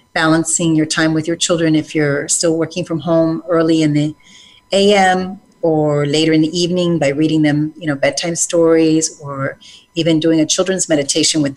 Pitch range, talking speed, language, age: 155-175 Hz, 180 wpm, English, 40-59